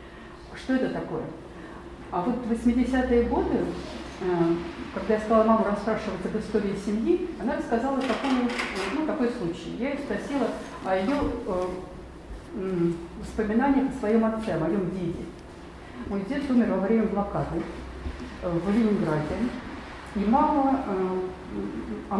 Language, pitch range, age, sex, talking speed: Russian, 190-255 Hz, 40-59, female, 130 wpm